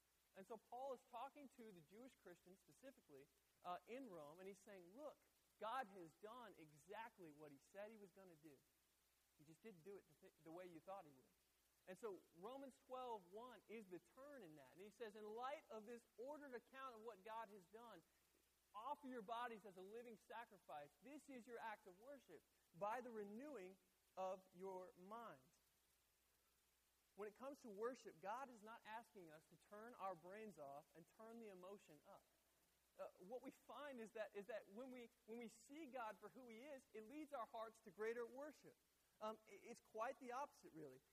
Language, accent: English, American